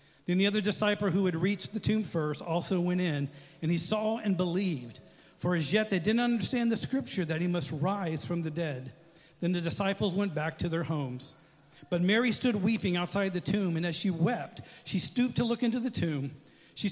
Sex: male